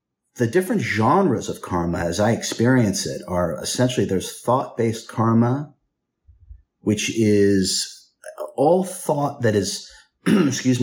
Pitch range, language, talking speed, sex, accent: 95-120 Hz, English, 115 wpm, male, American